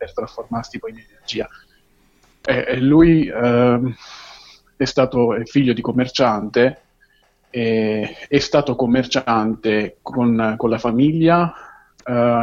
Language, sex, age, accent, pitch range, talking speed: Italian, male, 30-49, native, 115-145 Hz, 105 wpm